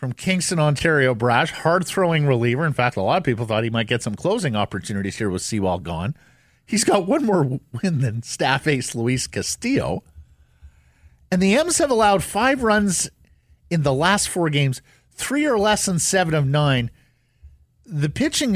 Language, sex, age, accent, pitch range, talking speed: English, male, 50-69, American, 125-170 Hz, 175 wpm